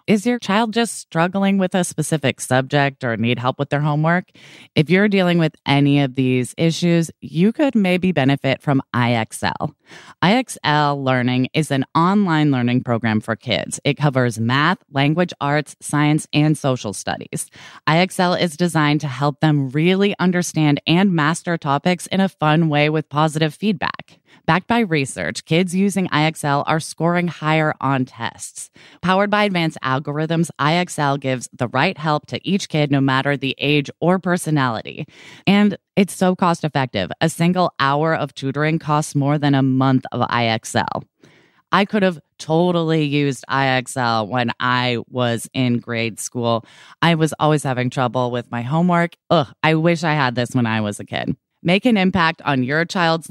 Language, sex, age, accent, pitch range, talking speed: English, female, 20-39, American, 130-175 Hz, 170 wpm